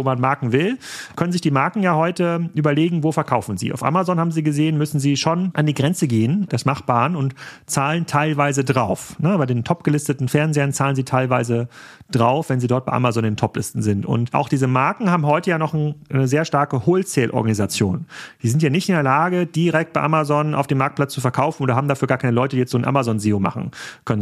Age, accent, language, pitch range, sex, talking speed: 40-59, German, German, 130-160 Hz, male, 225 wpm